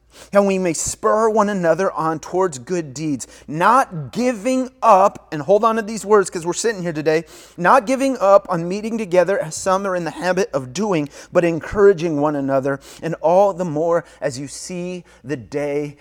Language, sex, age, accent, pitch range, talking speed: English, male, 30-49, American, 145-205 Hz, 190 wpm